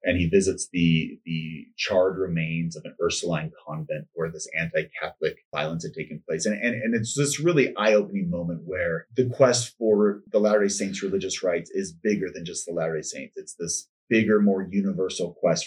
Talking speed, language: 185 wpm, English